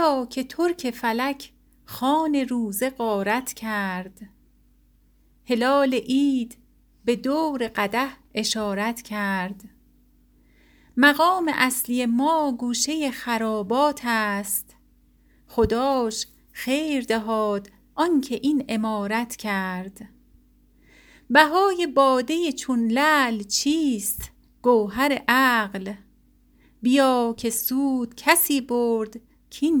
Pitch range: 215-270 Hz